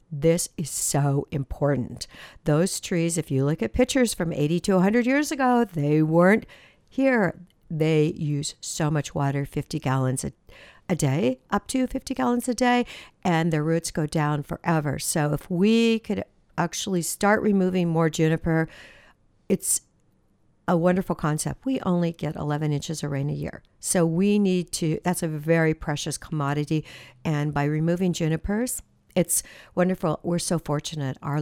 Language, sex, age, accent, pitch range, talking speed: English, female, 60-79, American, 150-180 Hz, 160 wpm